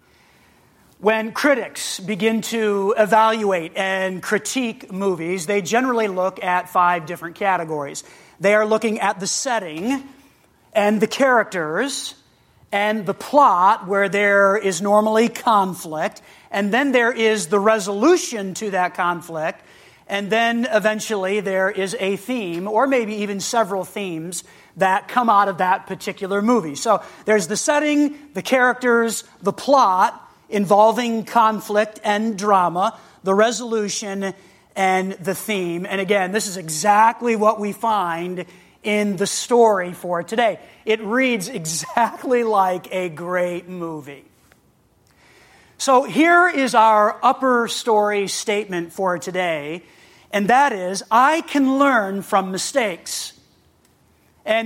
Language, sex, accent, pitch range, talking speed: English, male, American, 190-230 Hz, 125 wpm